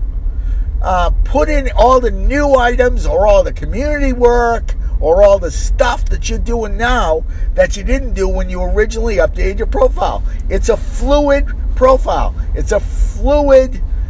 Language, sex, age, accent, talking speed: English, male, 50-69, American, 155 wpm